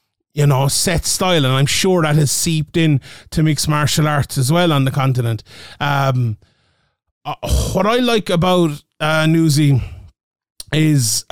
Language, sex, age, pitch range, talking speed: English, male, 30-49, 140-175 Hz, 155 wpm